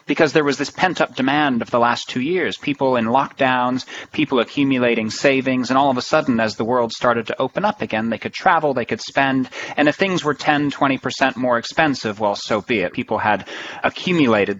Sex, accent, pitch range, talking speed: male, American, 120-155 Hz, 210 wpm